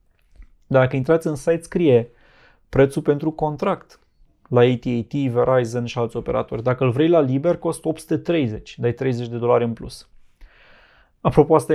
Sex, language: male, Romanian